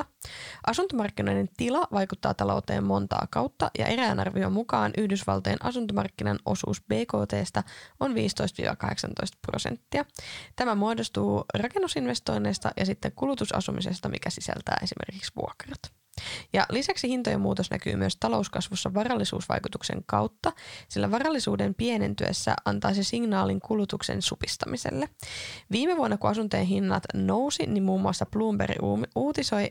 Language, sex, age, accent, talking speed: Finnish, female, 20-39, native, 105 wpm